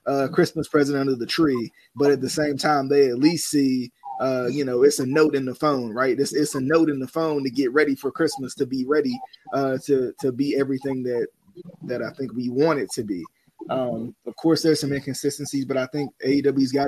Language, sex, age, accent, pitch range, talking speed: English, male, 20-39, American, 130-150 Hz, 235 wpm